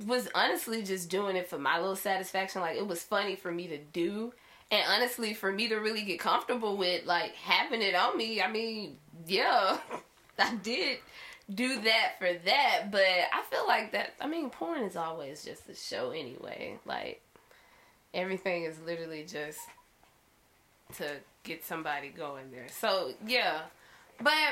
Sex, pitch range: female, 185-250 Hz